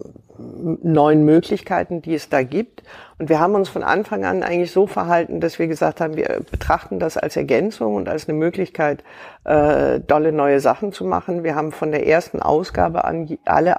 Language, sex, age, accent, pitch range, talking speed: German, female, 50-69, German, 145-170 Hz, 185 wpm